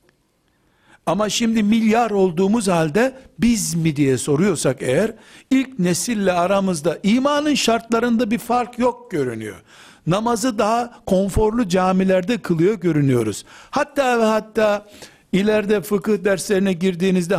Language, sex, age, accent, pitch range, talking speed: Turkish, male, 60-79, native, 170-225 Hz, 110 wpm